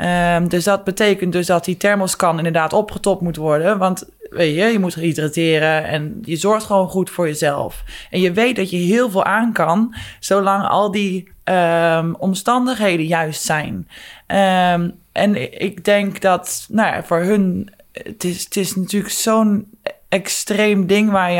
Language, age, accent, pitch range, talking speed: Dutch, 20-39, Dutch, 165-195 Hz, 170 wpm